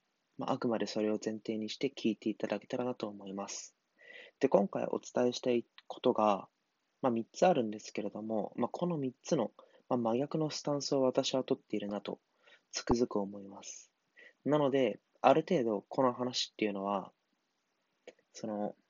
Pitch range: 105-130 Hz